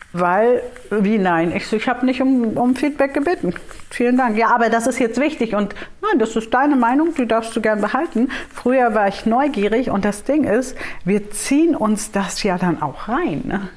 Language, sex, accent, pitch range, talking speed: German, female, German, 190-240 Hz, 200 wpm